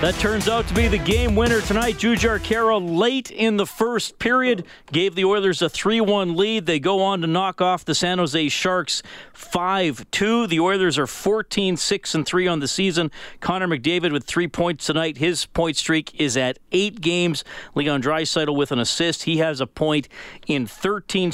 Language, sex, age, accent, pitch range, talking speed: English, male, 40-59, American, 135-180 Hz, 180 wpm